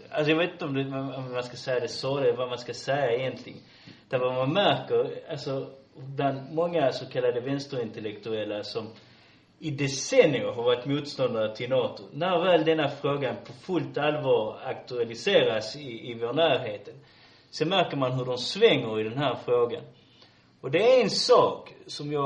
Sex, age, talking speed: male, 30-49, 175 wpm